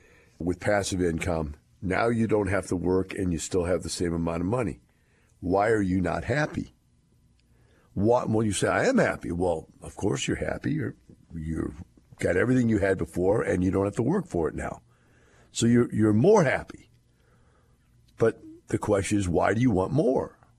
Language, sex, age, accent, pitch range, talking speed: English, male, 60-79, American, 100-140 Hz, 190 wpm